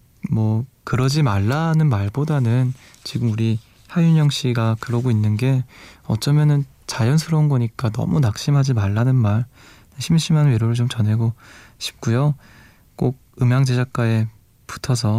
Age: 20-39